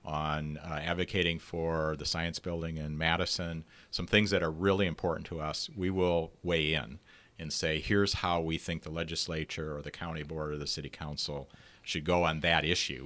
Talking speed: 195 wpm